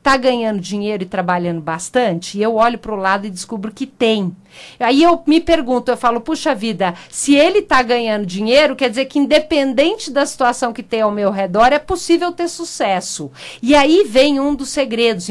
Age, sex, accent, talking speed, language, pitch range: 50-69, female, Brazilian, 195 wpm, Portuguese, 205-285 Hz